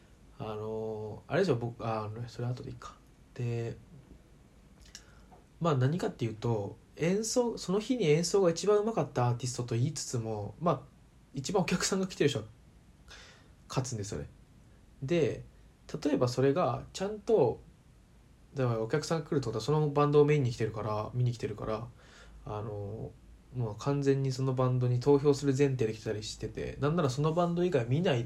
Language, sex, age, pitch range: Japanese, male, 20-39, 110-145 Hz